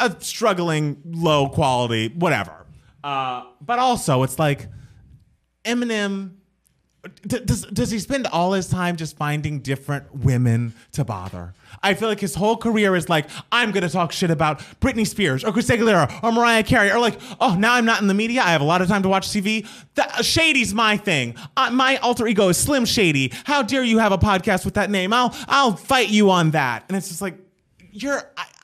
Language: English